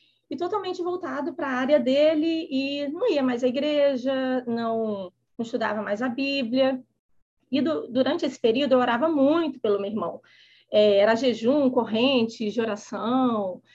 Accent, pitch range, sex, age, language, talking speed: Brazilian, 245-300 Hz, female, 30-49, Portuguese, 155 wpm